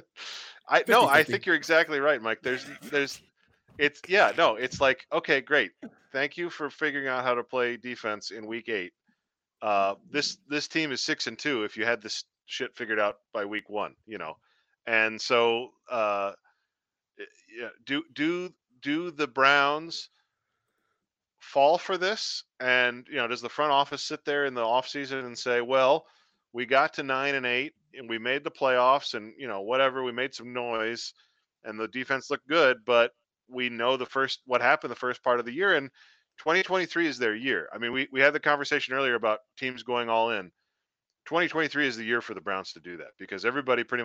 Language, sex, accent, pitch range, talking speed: English, male, American, 120-145 Hz, 195 wpm